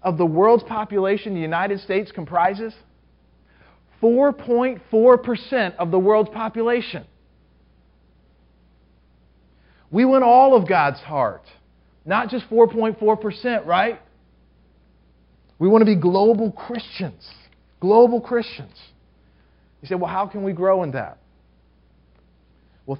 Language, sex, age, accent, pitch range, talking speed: English, male, 40-59, American, 125-200 Hz, 105 wpm